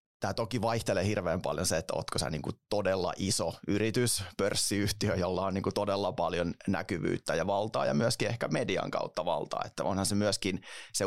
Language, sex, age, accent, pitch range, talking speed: Finnish, male, 30-49, native, 95-105 Hz, 170 wpm